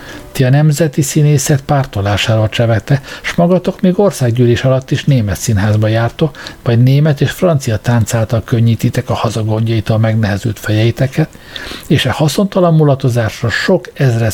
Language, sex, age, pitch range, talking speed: Hungarian, male, 60-79, 115-155 Hz, 130 wpm